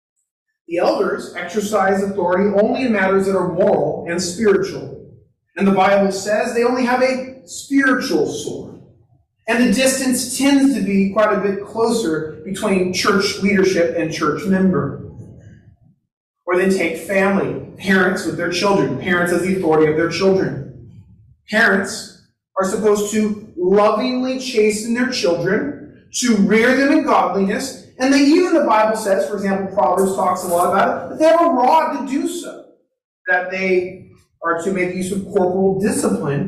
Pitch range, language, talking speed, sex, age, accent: 185-255 Hz, English, 160 wpm, male, 30-49, American